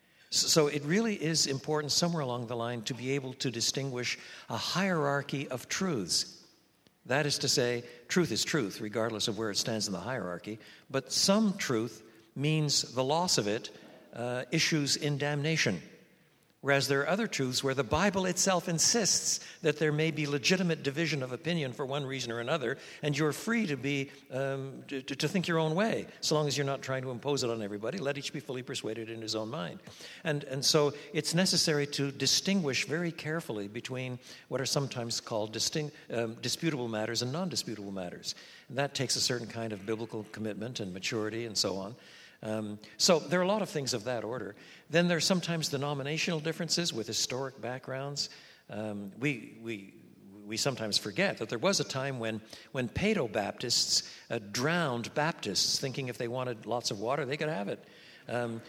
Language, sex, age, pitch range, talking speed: English, male, 60-79, 115-155 Hz, 190 wpm